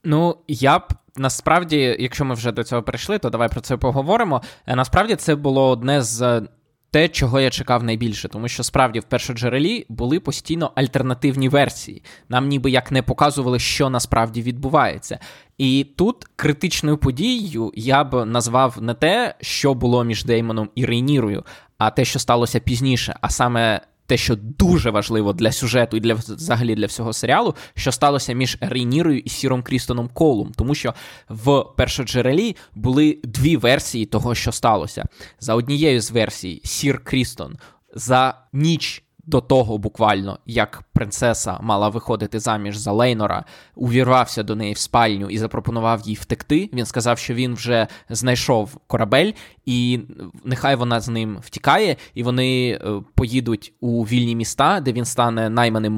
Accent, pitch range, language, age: native, 115-135 Hz, Ukrainian, 20-39